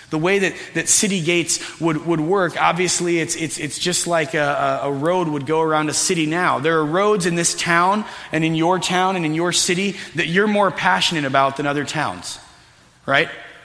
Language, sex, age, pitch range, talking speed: English, male, 30-49, 150-185 Hz, 205 wpm